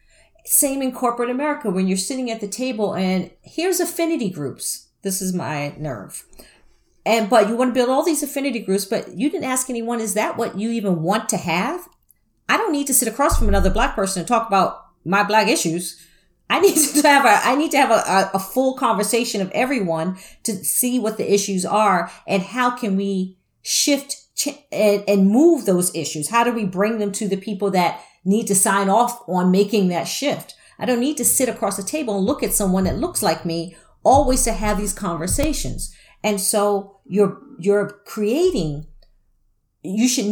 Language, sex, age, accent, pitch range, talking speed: English, female, 40-59, American, 195-255 Hz, 200 wpm